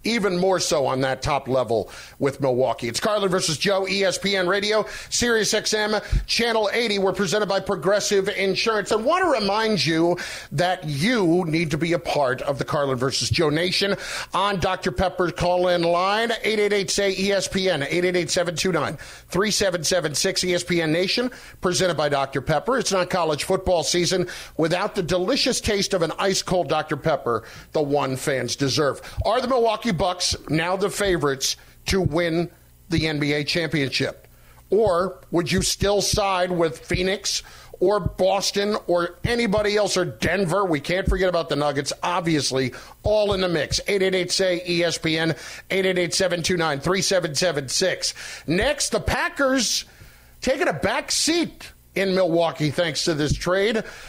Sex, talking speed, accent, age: male, 140 wpm, American, 40-59